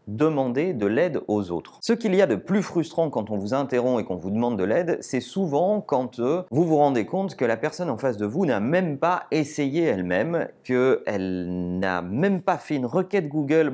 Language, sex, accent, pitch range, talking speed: French, male, French, 110-175 Hz, 220 wpm